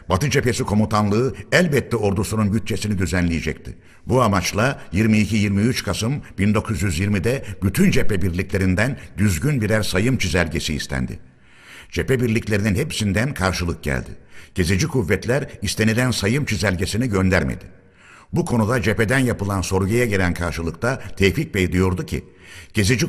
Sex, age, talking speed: male, 60-79, 110 wpm